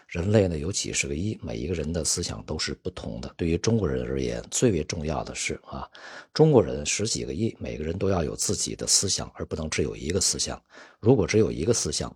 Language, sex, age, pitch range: Chinese, male, 50-69, 75-100 Hz